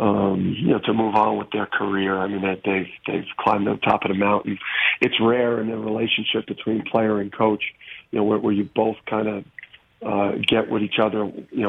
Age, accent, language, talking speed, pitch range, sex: 50-69, American, English, 220 wpm, 105-115 Hz, male